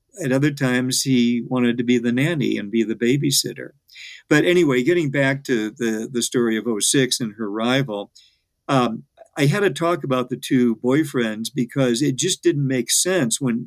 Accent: American